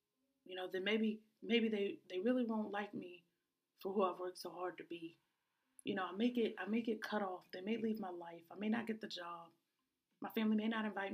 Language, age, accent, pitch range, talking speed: English, 30-49, American, 185-235 Hz, 240 wpm